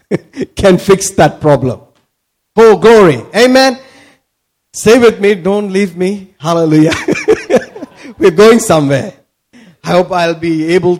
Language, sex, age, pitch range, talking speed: English, male, 50-69, 160-220 Hz, 120 wpm